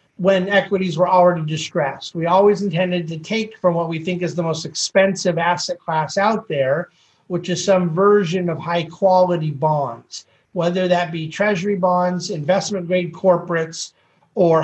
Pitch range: 165-195 Hz